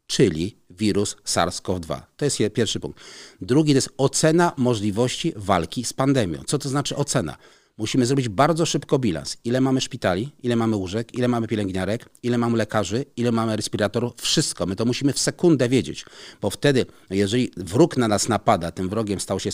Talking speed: 175 wpm